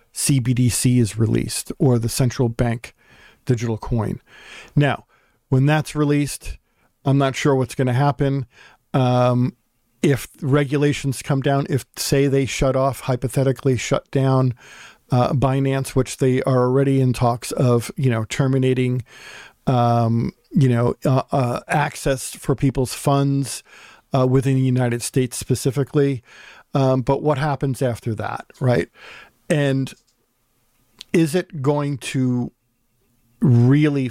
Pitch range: 120-140 Hz